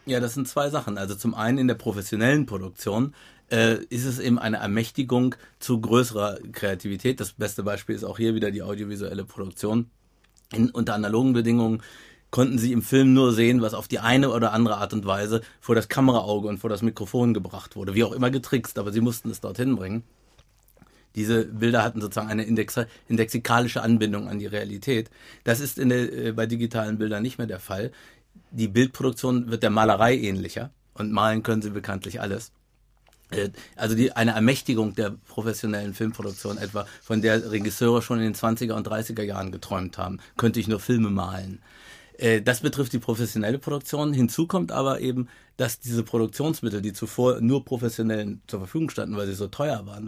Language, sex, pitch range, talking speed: German, male, 105-125 Hz, 180 wpm